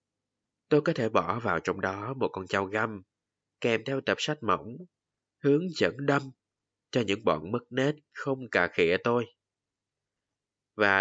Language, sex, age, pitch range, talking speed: Vietnamese, male, 20-39, 105-140 Hz, 160 wpm